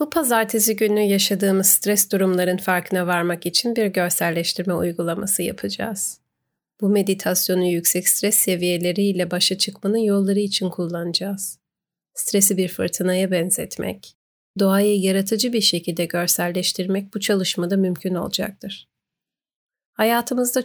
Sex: female